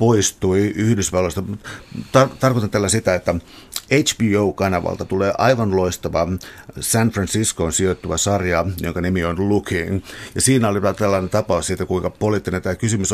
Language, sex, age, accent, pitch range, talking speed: Finnish, male, 60-79, native, 95-115 Hz, 130 wpm